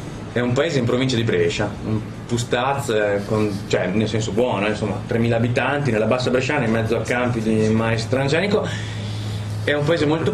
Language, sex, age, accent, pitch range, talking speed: Italian, male, 30-49, native, 115-150 Hz, 175 wpm